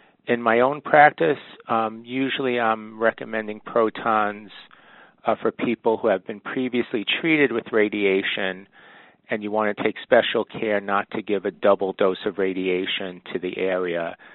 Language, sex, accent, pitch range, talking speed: English, male, American, 95-115 Hz, 155 wpm